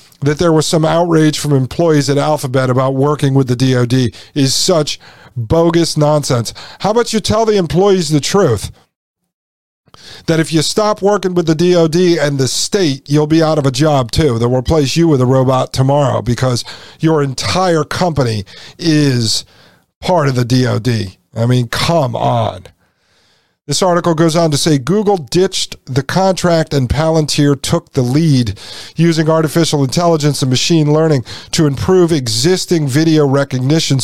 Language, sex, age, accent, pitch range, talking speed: English, male, 50-69, American, 130-170 Hz, 160 wpm